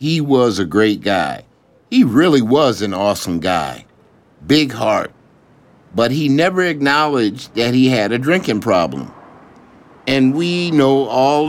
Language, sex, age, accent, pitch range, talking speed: English, male, 50-69, American, 110-135 Hz, 140 wpm